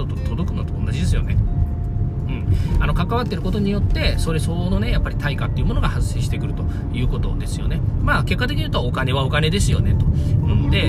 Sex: male